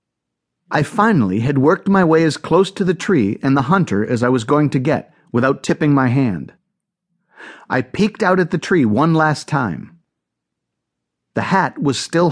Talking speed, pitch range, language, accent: 180 wpm, 115-180 Hz, English, American